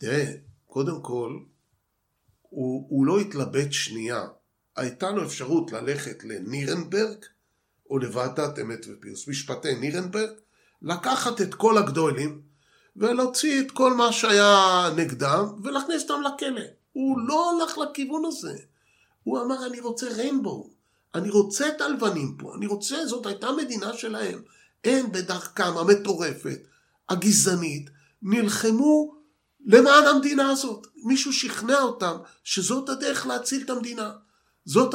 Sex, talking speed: male, 120 wpm